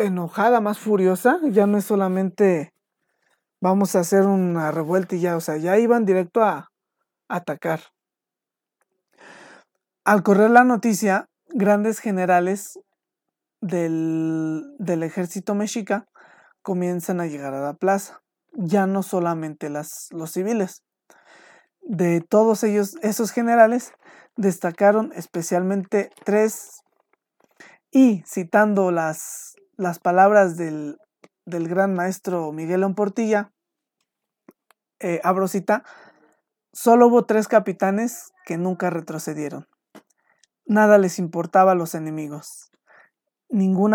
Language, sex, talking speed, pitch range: Spanish, male, 110 wpm, 175-215 Hz